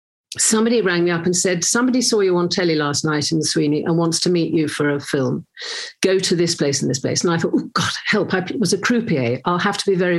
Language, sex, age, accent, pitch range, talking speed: English, female, 50-69, British, 165-210 Hz, 270 wpm